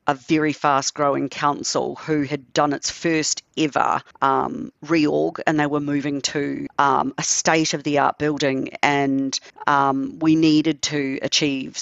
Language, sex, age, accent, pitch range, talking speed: German, female, 50-69, Australian, 145-195 Hz, 135 wpm